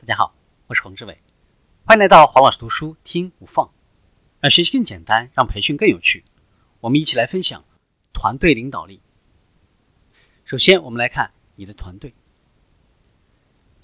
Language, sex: Chinese, male